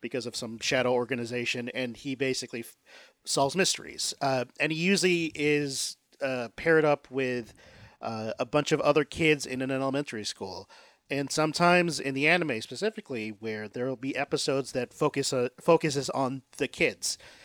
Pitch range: 130-165 Hz